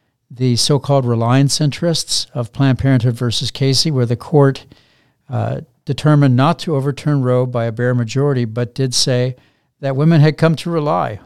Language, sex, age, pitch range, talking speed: English, male, 60-79, 120-145 Hz, 165 wpm